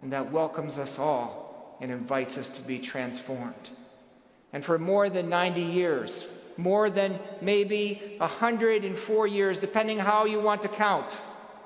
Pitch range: 150-205 Hz